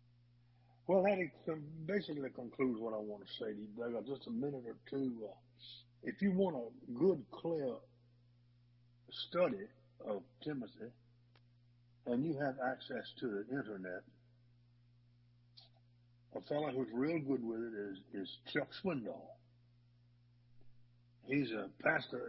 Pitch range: 120-135 Hz